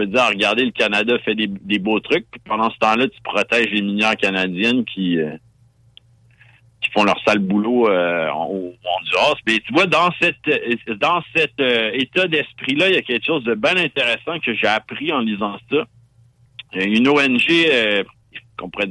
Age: 60-79